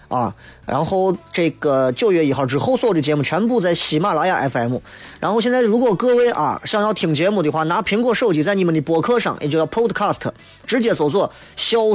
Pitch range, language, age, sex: 145-200 Hz, Chinese, 20-39, male